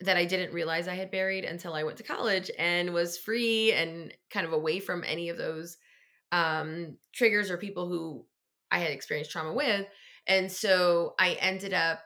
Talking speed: 190 wpm